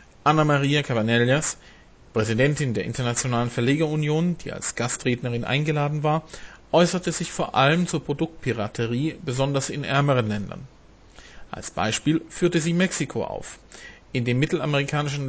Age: 40-59